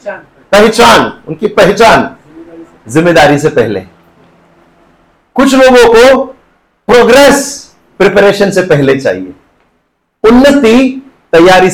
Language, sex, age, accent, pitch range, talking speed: Hindi, male, 40-59, native, 185-265 Hz, 80 wpm